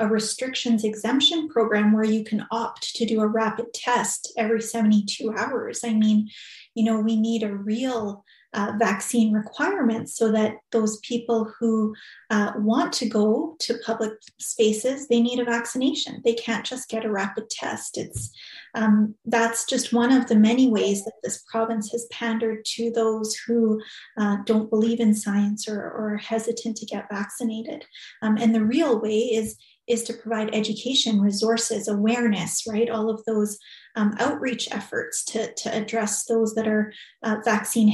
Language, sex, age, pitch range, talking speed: English, female, 30-49, 215-235 Hz, 170 wpm